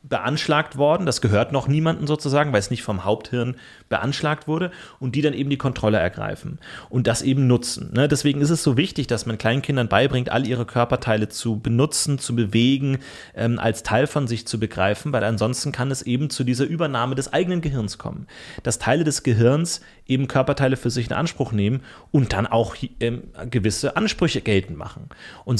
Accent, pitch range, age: German, 110-140 Hz, 30-49